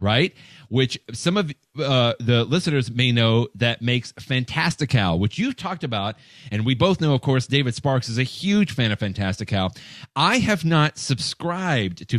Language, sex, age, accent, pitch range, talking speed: English, male, 40-59, American, 110-145 Hz, 170 wpm